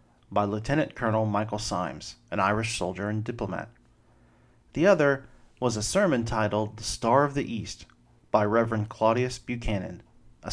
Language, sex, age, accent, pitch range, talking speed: English, male, 40-59, American, 105-125 Hz, 150 wpm